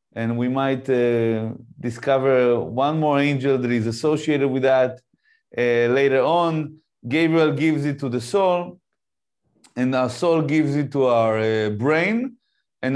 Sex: male